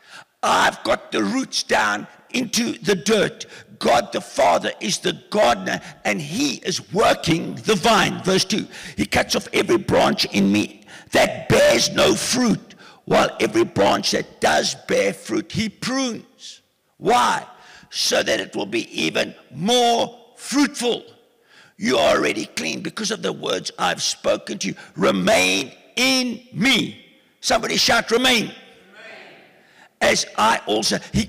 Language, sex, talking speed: English, male, 140 wpm